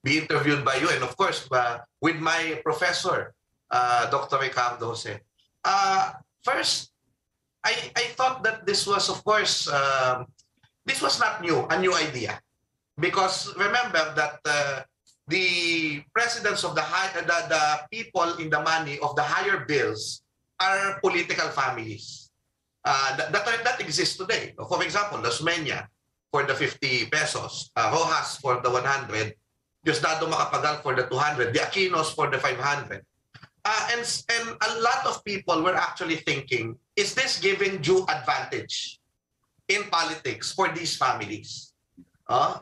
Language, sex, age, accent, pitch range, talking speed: English, male, 30-49, Filipino, 130-195 Hz, 150 wpm